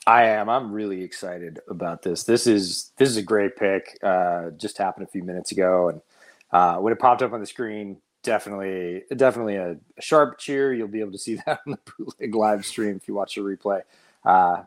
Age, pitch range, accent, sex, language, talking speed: 30-49, 90-115 Hz, American, male, English, 215 wpm